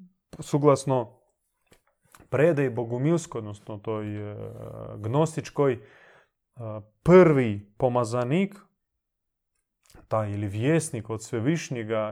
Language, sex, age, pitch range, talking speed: Croatian, male, 30-49, 120-150 Hz, 70 wpm